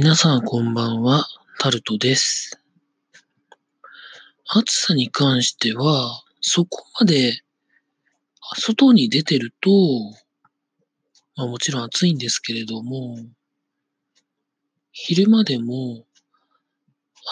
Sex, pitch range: male, 130-180 Hz